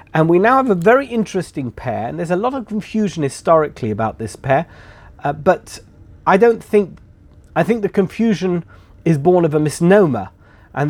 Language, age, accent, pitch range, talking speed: English, 40-59, British, 130-185 Hz, 180 wpm